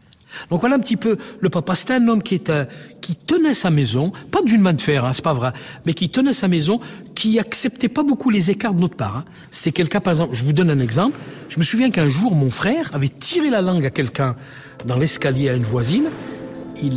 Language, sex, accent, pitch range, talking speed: French, male, French, 135-190 Hz, 240 wpm